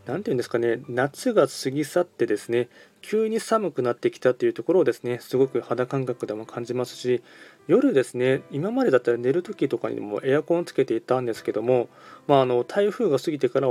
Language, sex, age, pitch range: Japanese, male, 20-39, 120-155 Hz